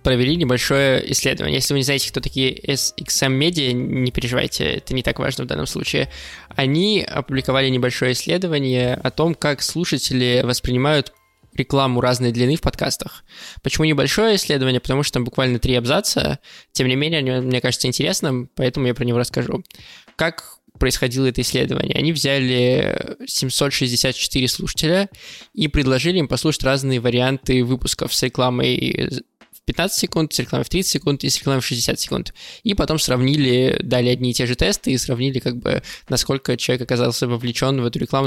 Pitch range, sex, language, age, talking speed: 125-150 Hz, male, Russian, 20-39, 165 wpm